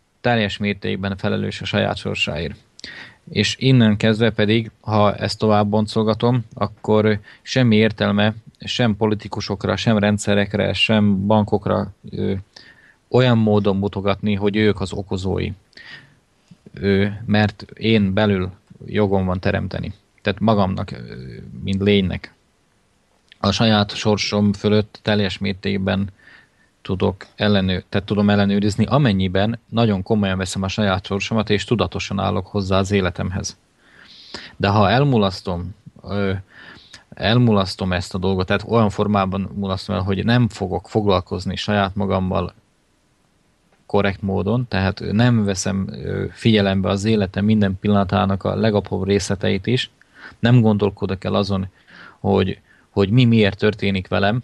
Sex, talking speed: male, 120 wpm